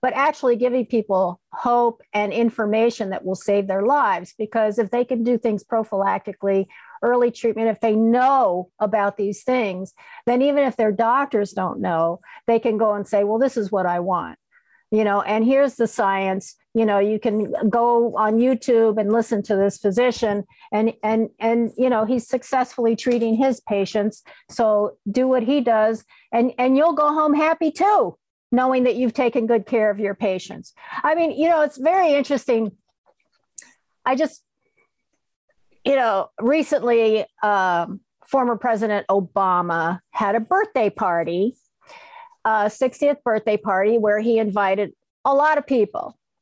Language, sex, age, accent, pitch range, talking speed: English, female, 50-69, American, 205-255 Hz, 160 wpm